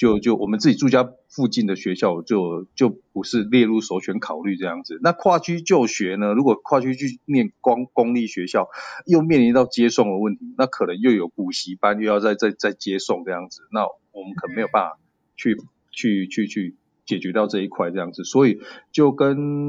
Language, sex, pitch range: Chinese, male, 110-150 Hz